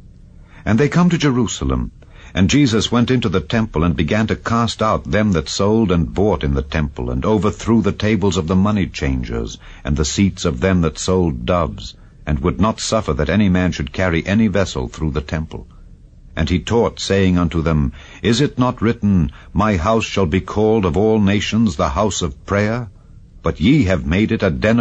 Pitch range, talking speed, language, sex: 75-105 Hz, 200 wpm, English, male